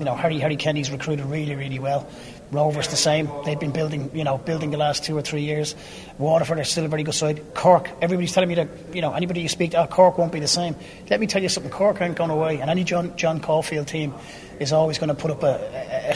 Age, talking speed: 30-49, 260 wpm